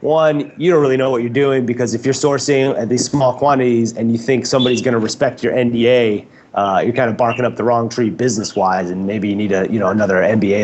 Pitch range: 115-140 Hz